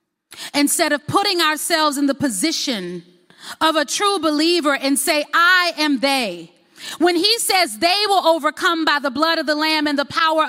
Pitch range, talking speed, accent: 190-290 Hz, 175 wpm, American